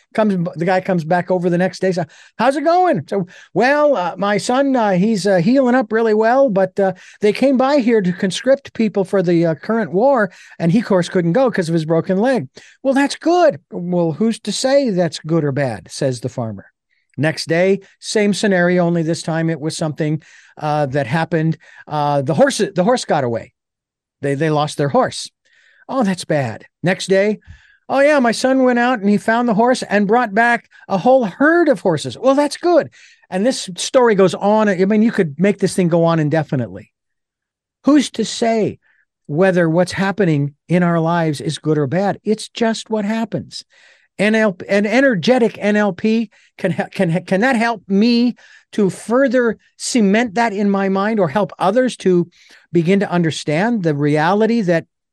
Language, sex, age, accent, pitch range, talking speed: English, male, 50-69, American, 170-230 Hz, 190 wpm